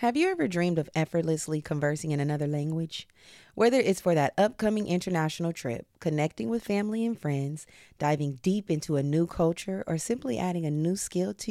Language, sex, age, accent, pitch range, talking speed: English, female, 30-49, American, 145-195 Hz, 180 wpm